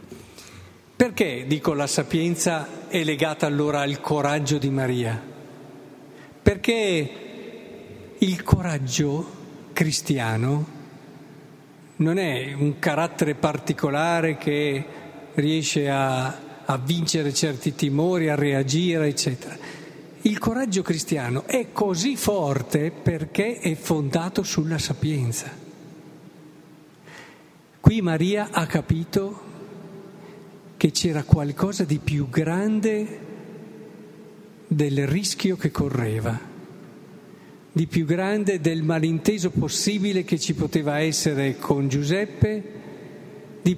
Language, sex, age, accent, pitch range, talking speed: Italian, male, 50-69, native, 150-200 Hz, 95 wpm